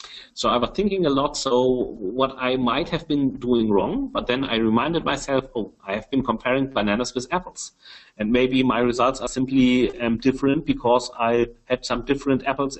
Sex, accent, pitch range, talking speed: male, German, 125-155 Hz, 190 wpm